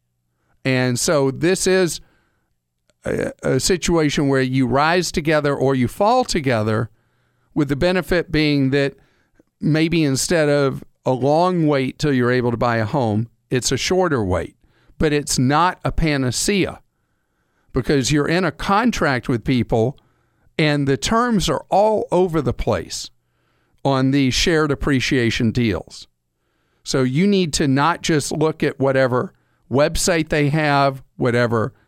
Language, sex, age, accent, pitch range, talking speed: English, male, 50-69, American, 120-165 Hz, 140 wpm